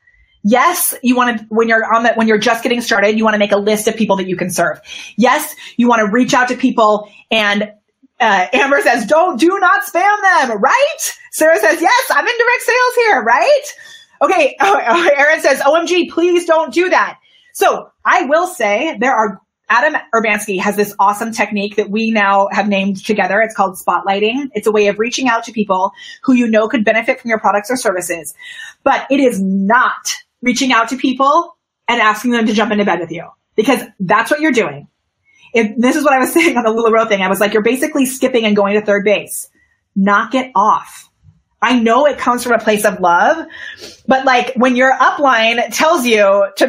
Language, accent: English, American